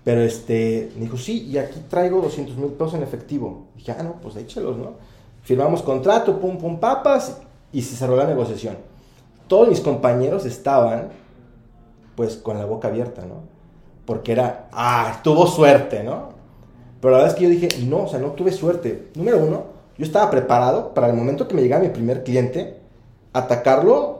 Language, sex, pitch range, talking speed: Spanish, male, 115-150 Hz, 185 wpm